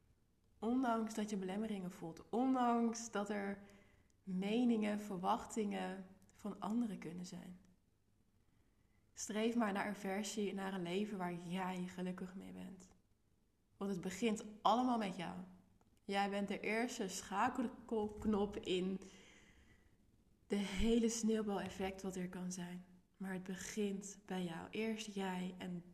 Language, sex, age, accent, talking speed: Dutch, female, 20-39, Dutch, 125 wpm